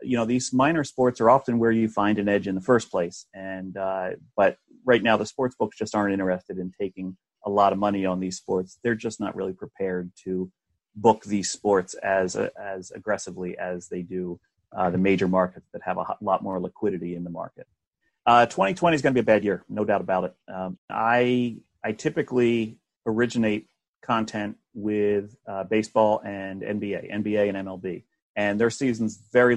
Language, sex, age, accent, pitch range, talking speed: English, male, 30-49, American, 95-120 Hz, 195 wpm